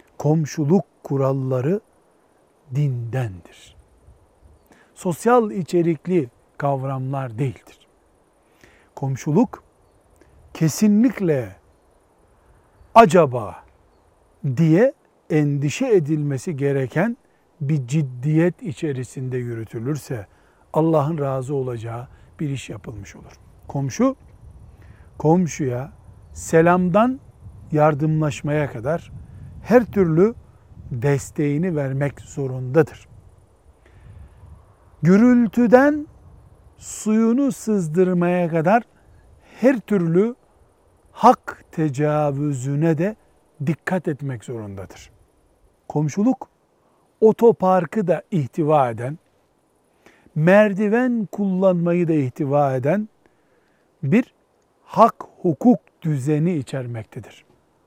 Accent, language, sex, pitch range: native, Turkish, male, 130-185 Hz